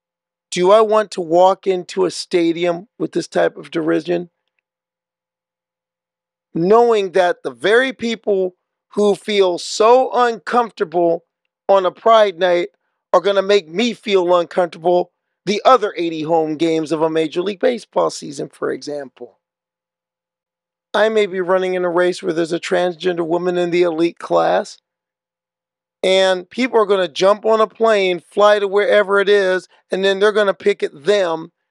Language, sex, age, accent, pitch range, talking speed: English, male, 40-59, American, 175-205 Hz, 155 wpm